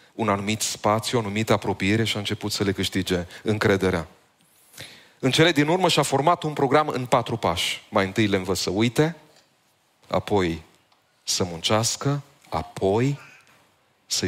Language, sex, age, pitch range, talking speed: Romanian, male, 30-49, 95-135 Hz, 145 wpm